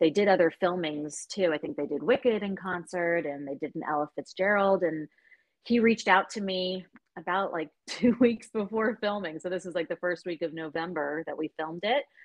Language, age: English, 30-49